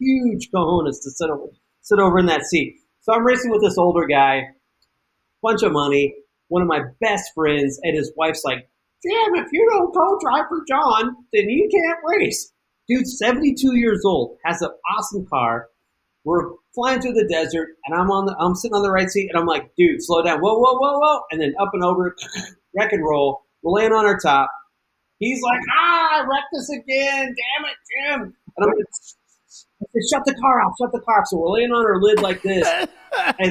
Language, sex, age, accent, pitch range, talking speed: English, male, 40-59, American, 160-240 Hz, 210 wpm